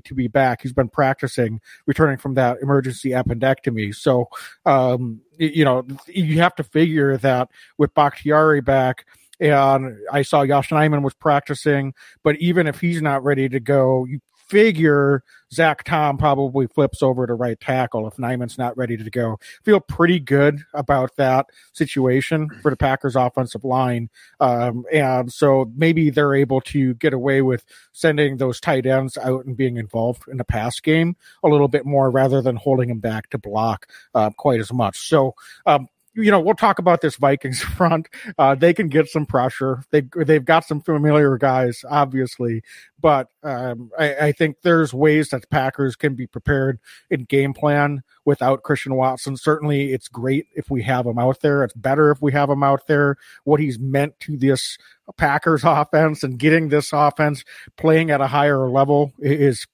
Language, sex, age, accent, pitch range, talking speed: English, male, 40-59, American, 130-150 Hz, 180 wpm